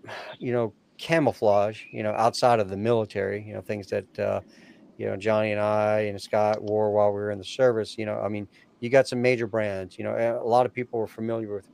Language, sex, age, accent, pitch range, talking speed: English, male, 40-59, American, 105-120 Hz, 235 wpm